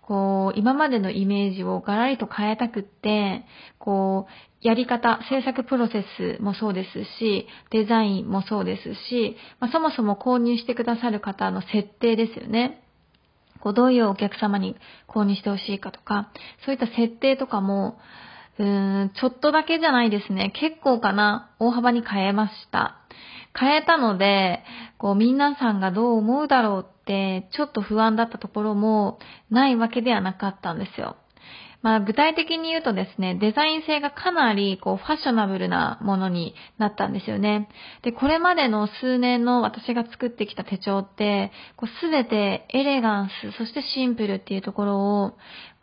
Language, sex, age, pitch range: Japanese, female, 20-39, 200-250 Hz